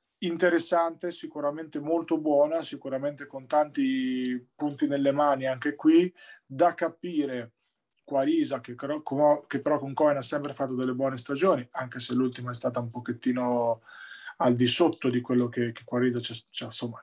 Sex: male